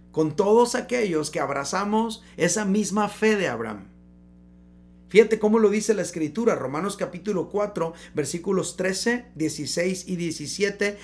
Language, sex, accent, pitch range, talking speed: Spanish, male, Mexican, 155-225 Hz, 130 wpm